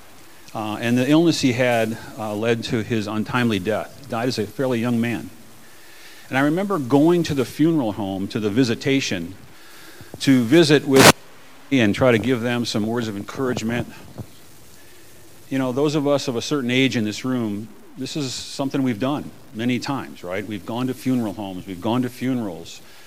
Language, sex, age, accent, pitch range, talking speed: English, male, 40-59, American, 115-140 Hz, 185 wpm